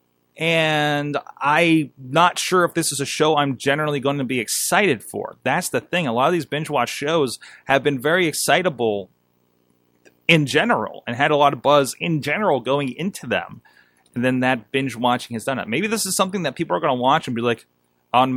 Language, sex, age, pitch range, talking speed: English, male, 30-49, 110-165 Hz, 210 wpm